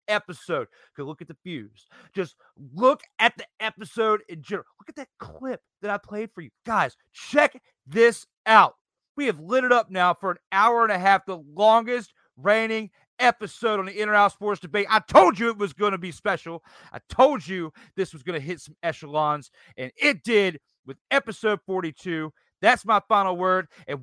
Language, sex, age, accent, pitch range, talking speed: English, male, 40-59, American, 150-215 Hz, 190 wpm